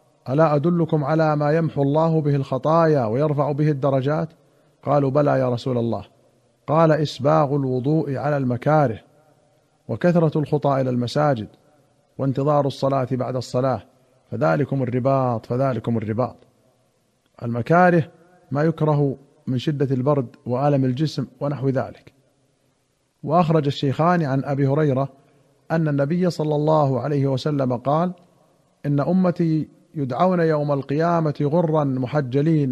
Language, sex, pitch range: Arabic, male, 135-155 Hz